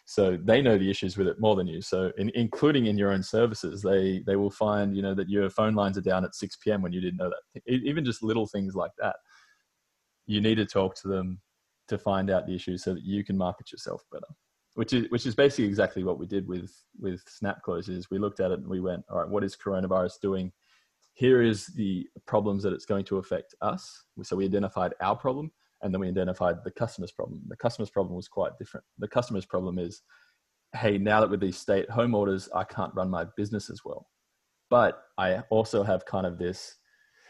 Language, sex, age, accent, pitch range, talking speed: English, male, 20-39, Australian, 95-105 Hz, 225 wpm